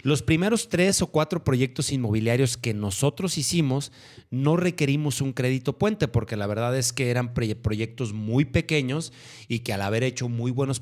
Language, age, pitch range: Spanish, 30-49, 115-145 Hz